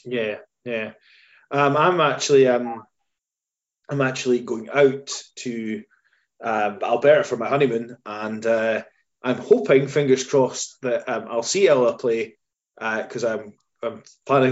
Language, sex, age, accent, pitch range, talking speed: English, male, 20-39, British, 125-165 Hz, 135 wpm